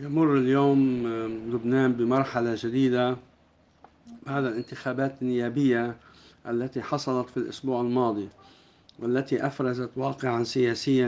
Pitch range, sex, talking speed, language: 125-140 Hz, male, 90 wpm, Arabic